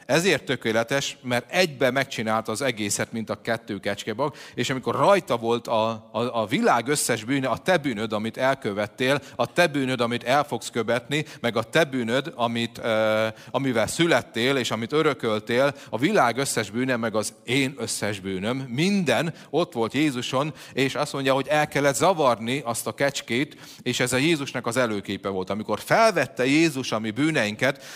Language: Hungarian